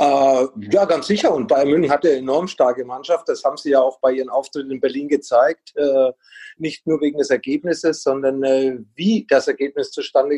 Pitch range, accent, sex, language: 140-170 Hz, German, male, German